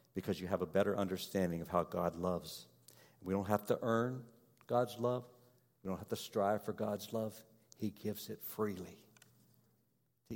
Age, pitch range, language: 60-79, 85-110 Hz, English